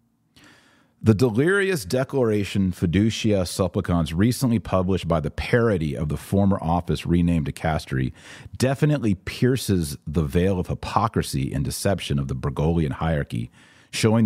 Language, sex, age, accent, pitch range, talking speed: English, male, 40-59, American, 85-115 Hz, 125 wpm